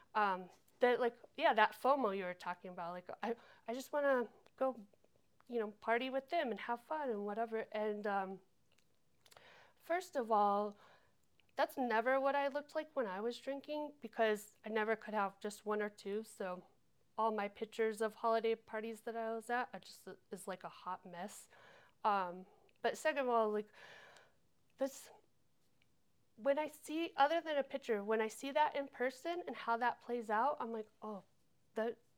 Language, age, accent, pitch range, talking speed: English, 30-49, American, 205-250 Hz, 185 wpm